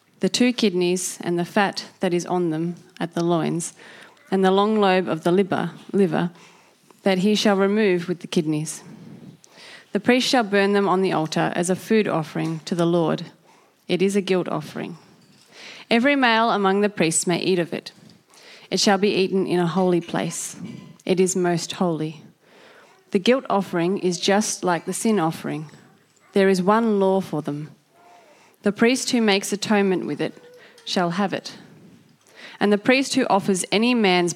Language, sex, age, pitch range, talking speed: English, female, 30-49, 175-210 Hz, 175 wpm